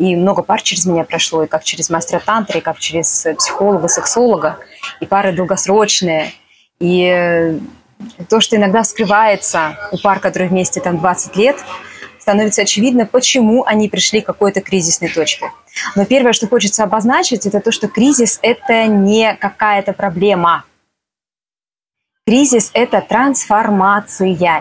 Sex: female